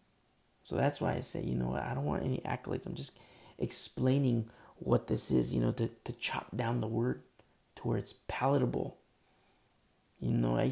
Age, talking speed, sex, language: 30-49, 185 wpm, male, English